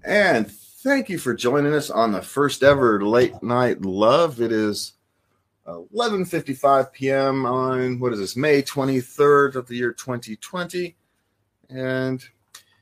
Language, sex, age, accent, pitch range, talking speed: English, male, 30-49, American, 105-135 Hz, 130 wpm